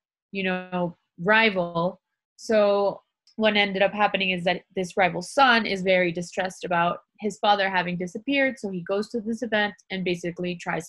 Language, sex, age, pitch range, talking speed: English, female, 20-39, 175-205 Hz, 165 wpm